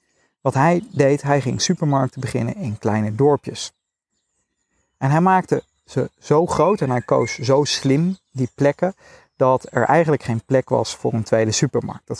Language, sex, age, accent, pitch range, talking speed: Dutch, male, 40-59, Dutch, 115-140 Hz, 165 wpm